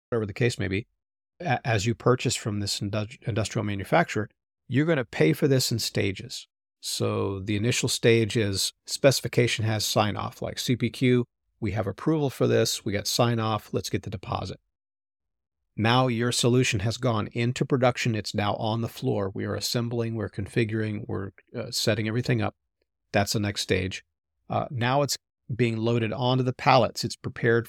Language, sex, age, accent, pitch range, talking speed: English, male, 40-59, American, 105-125 Hz, 165 wpm